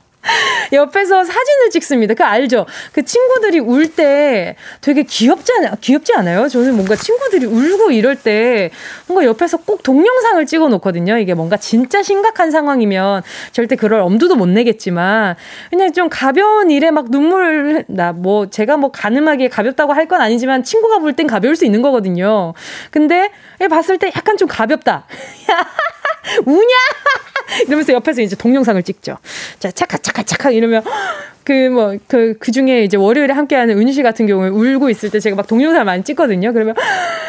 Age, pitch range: 20-39, 220-355 Hz